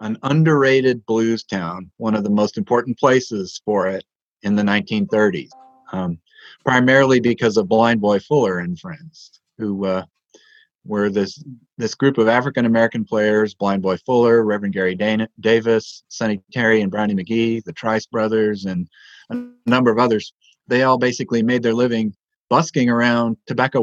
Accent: American